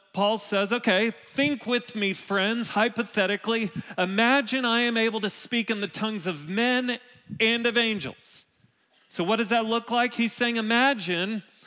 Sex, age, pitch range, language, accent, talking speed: male, 40-59, 180-235 Hz, English, American, 160 wpm